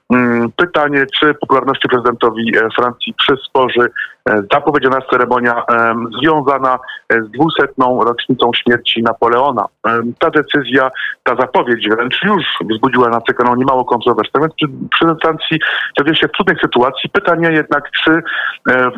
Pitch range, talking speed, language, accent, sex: 120-145 Hz, 115 wpm, Polish, native, male